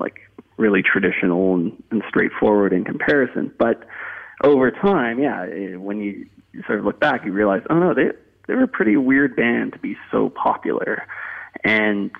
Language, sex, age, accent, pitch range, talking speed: English, male, 30-49, American, 95-125 Hz, 160 wpm